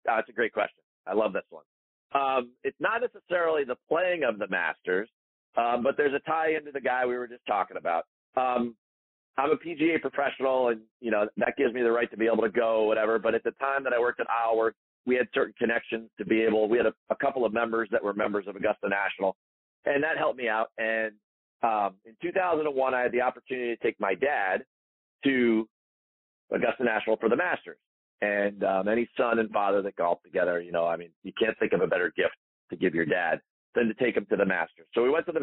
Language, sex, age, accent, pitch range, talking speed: English, male, 40-59, American, 105-130 Hz, 235 wpm